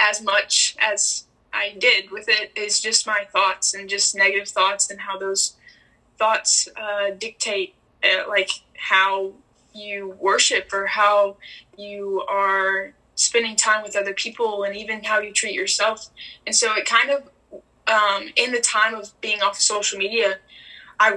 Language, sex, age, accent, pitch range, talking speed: English, female, 10-29, American, 200-220 Hz, 160 wpm